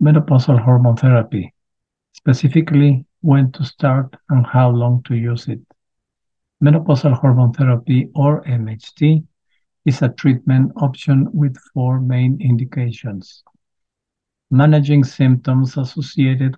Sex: male